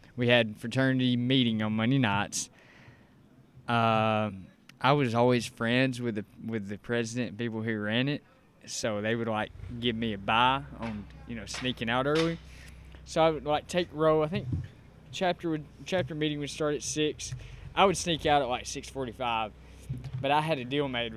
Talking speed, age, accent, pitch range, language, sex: 190 wpm, 20-39, American, 110-140 Hz, English, male